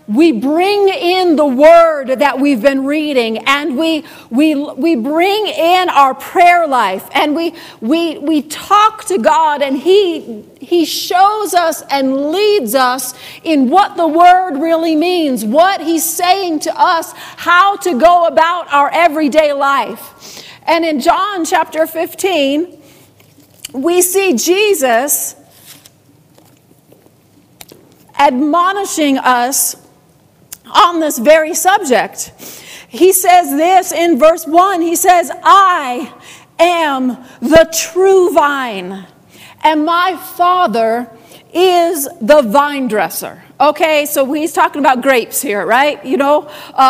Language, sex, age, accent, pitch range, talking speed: English, female, 40-59, American, 280-345 Hz, 120 wpm